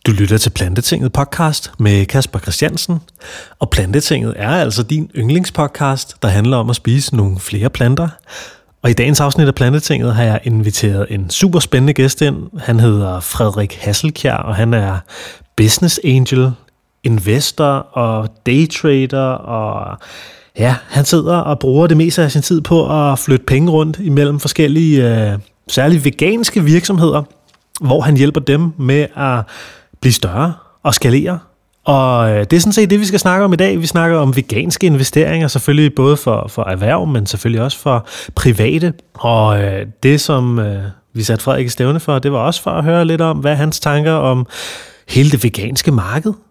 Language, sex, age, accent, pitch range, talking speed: Danish, male, 30-49, native, 115-155 Hz, 170 wpm